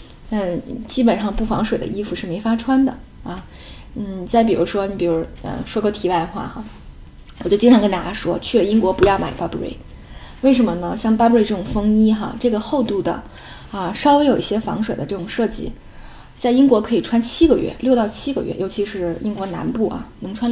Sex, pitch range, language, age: female, 180-230 Hz, Chinese, 10-29